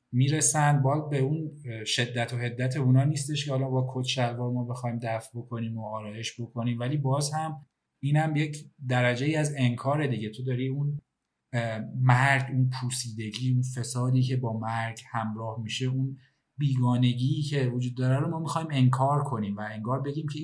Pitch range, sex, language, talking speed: 120-140 Hz, male, Persian, 175 wpm